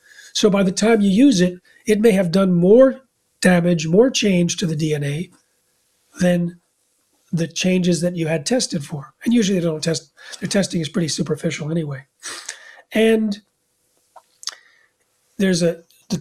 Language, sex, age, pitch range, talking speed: English, male, 40-59, 170-220 Hz, 150 wpm